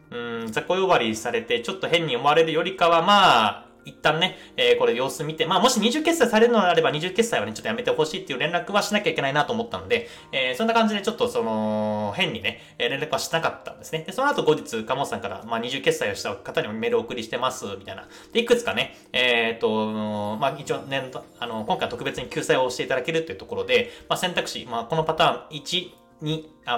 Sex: male